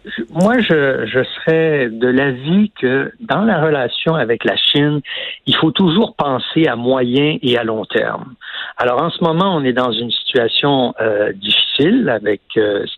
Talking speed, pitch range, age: 170 wpm, 120-175 Hz, 60-79